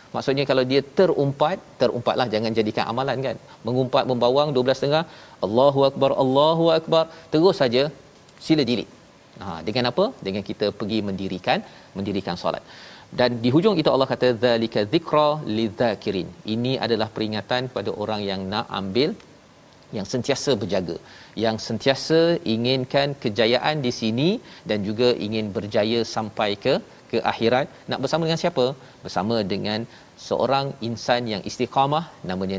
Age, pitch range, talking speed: 40-59, 110-145 Hz, 135 wpm